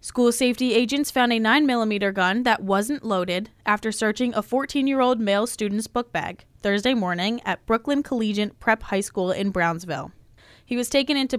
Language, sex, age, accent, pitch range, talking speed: English, female, 10-29, American, 195-240 Hz, 170 wpm